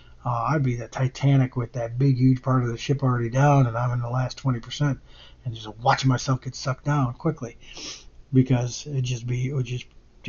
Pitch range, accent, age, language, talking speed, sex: 120-140 Hz, American, 40-59, English, 210 wpm, male